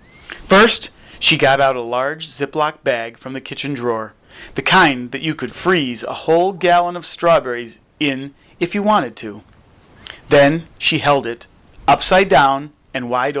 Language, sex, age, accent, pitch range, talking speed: English, male, 30-49, American, 115-165 Hz, 160 wpm